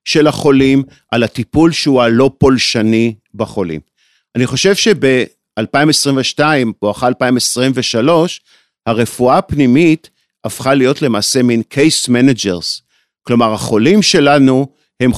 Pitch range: 120-155 Hz